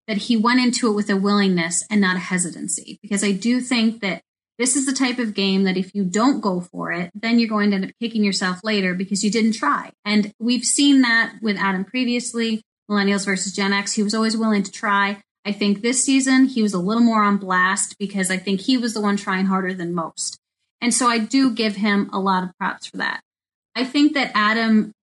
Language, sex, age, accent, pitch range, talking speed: English, female, 30-49, American, 190-240 Hz, 235 wpm